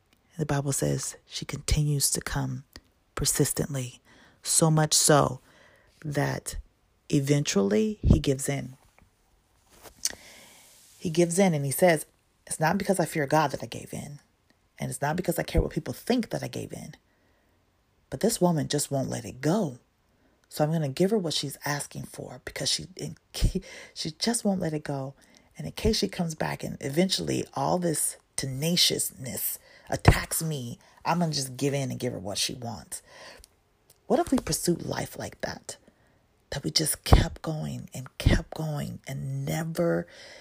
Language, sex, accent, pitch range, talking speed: English, female, American, 135-175 Hz, 170 wpm